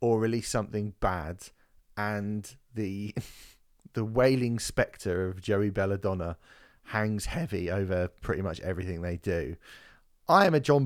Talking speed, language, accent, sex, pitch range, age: 135 wpm, English, British, male, 90-115 Hz, 30-49